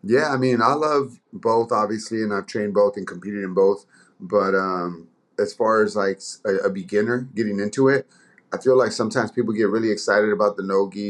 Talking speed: 210 wpm